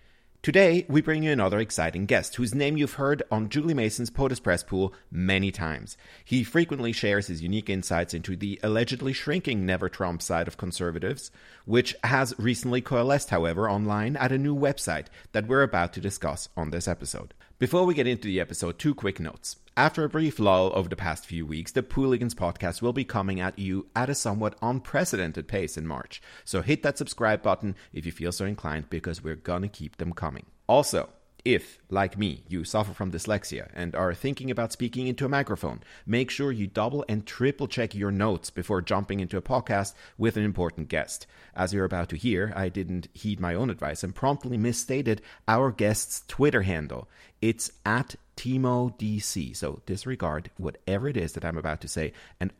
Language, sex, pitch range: English, male, 90-125 Hz